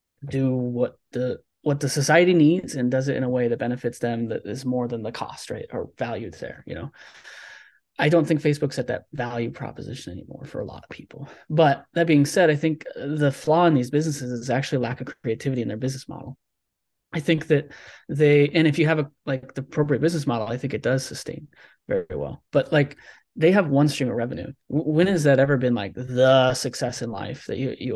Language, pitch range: English, 125-150 Hz